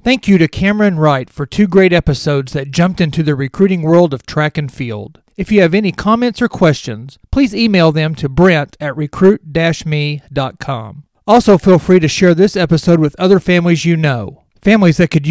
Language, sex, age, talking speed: English, male, 40-59, 190 wpm